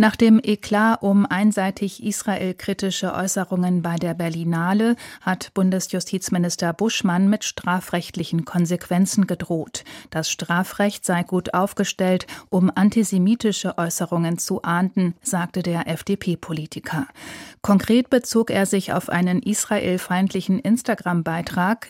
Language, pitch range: German, 175-205 Hz